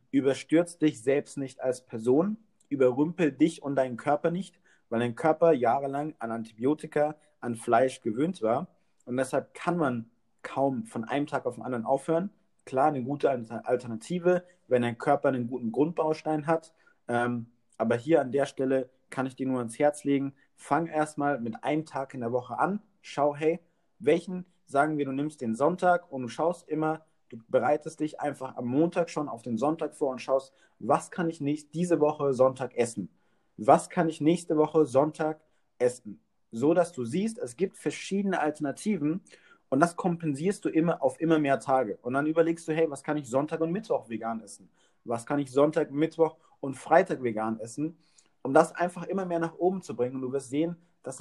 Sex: male